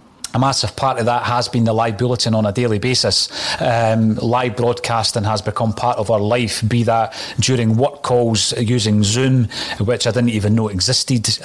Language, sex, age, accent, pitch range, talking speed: English, male, 30-49, British, 110-130 Hz, 190 wpm